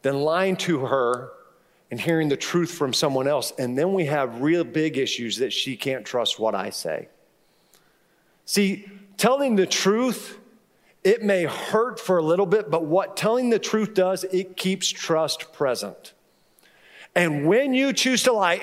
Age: 40-59